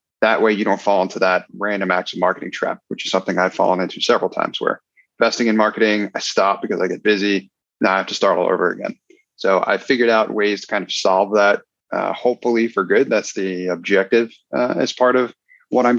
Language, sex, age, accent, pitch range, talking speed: English, male, 30-49, American, 100-125 Hz, 225 wpm